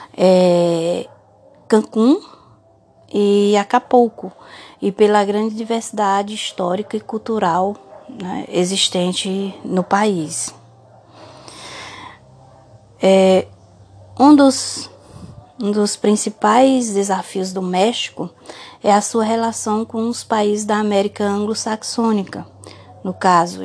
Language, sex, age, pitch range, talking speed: Portuguese, female, 20-39, 190-230 Hz, 85 wpm